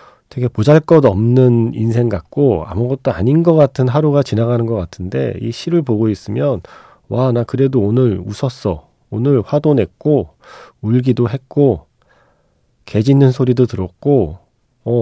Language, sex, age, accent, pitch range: Korean, male, 40-59, native, 100-140 Hz